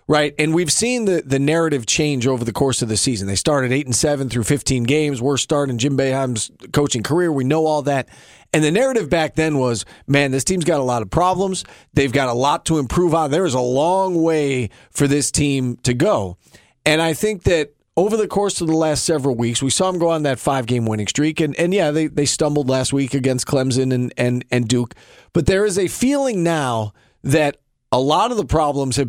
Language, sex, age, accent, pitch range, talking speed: English, male, 40-59, American, 135-170 Hz, 235 wpm